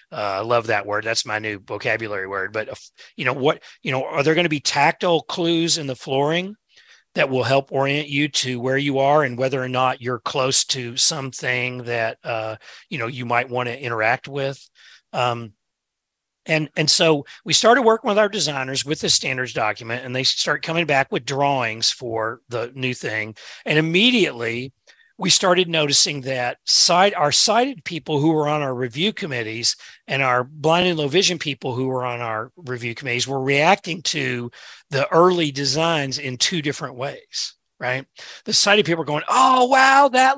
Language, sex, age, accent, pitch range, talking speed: English, male, 40-59, American, 125-190 Hz, 185 wpm